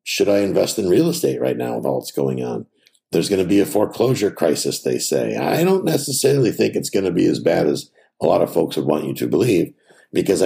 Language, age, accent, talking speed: English, 60-79, American, 245 wpm